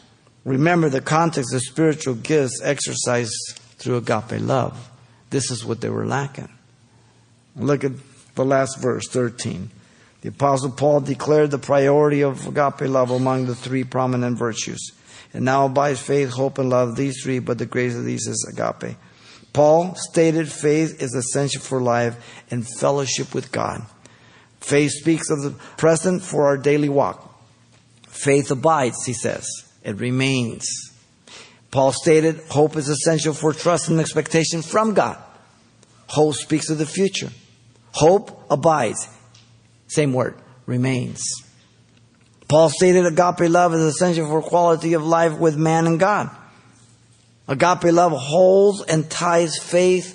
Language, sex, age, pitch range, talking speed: English, male, 50-69, 120-155 Hz, 140 wpm